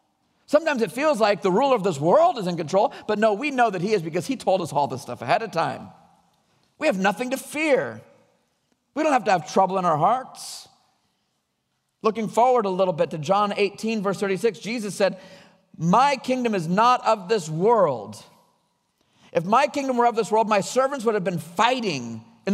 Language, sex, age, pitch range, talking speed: English, male, 50-69, 180-240 Hz, 200 wpm